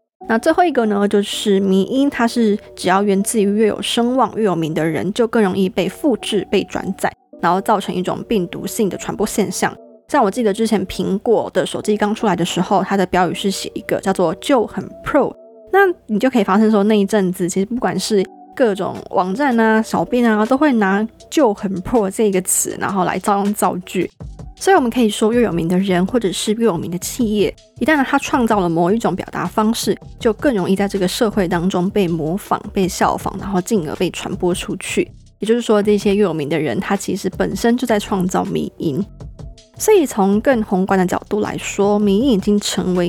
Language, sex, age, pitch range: Chinese, female, 20-39, 190-220 Hz